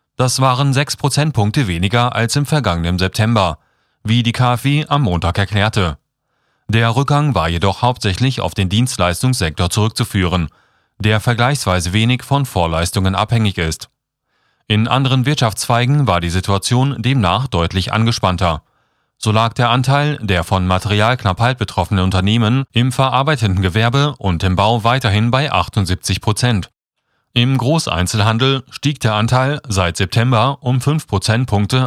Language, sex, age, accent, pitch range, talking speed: German, male, 40-59, German, 95-130 Hz, 130 wpm